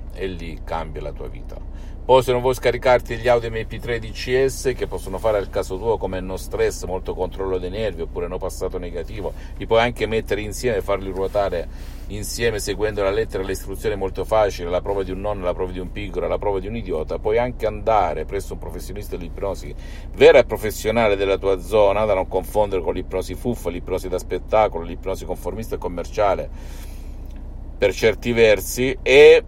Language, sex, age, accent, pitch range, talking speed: Italian, male, 50-69, native, 90-125 Hz, 190 wpm